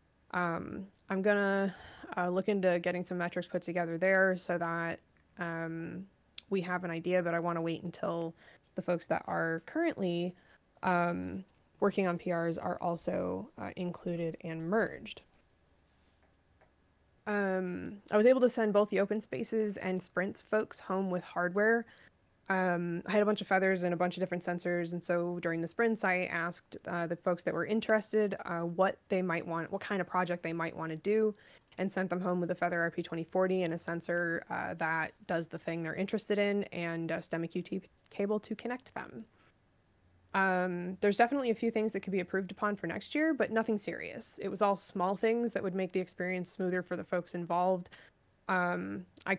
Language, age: English, 20-39